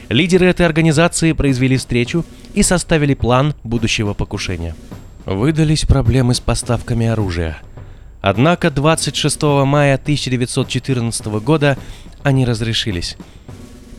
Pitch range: 100-135 Hz